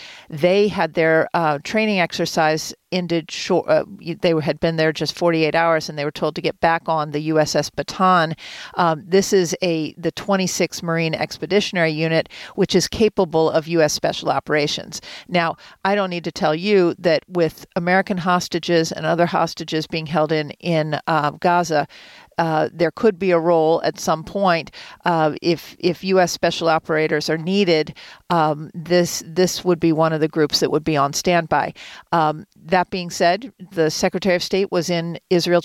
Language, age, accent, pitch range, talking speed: English, 50-69, American, 155-180 Hz, 180 wpm